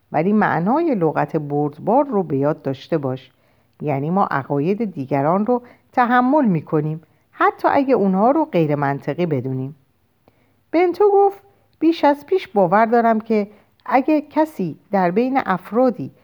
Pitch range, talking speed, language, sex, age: 145-230 Hz, 135 wpm, Persian, female, 50-69